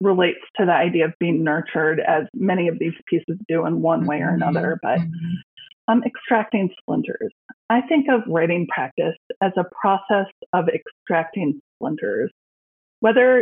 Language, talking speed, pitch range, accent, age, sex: English, 155 wpm, 165-225 Hz, American, 30-49, female